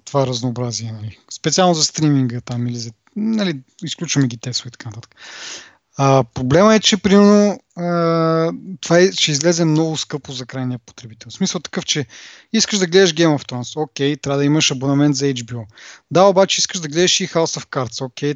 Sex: male